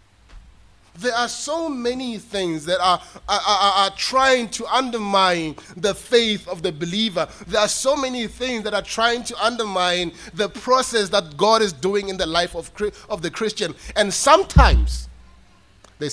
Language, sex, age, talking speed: English, male, 30-49, 165 wpm